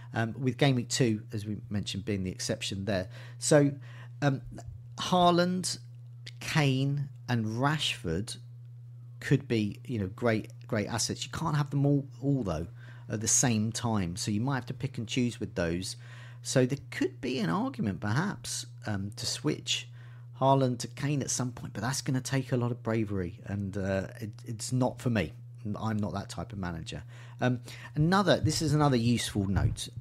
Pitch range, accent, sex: 110-125 Hz, British, male